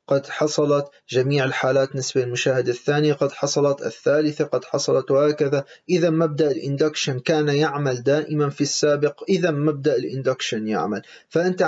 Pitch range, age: 140-185 Hz, 30-49